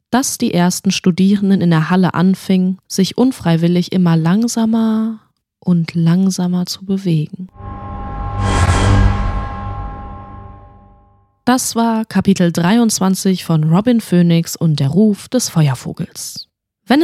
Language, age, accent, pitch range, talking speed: German, 20-39, German, 175-230 Hz, 100 wpm